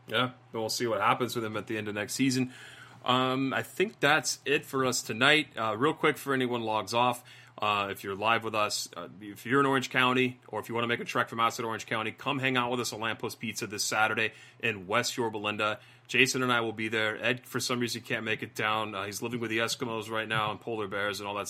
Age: 30-49